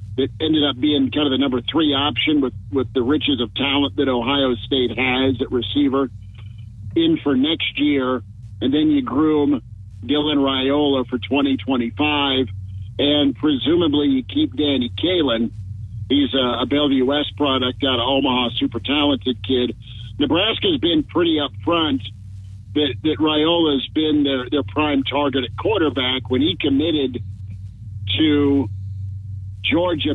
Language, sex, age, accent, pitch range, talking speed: English, male, 50-69, American, 105-145 Hz, 145 wpm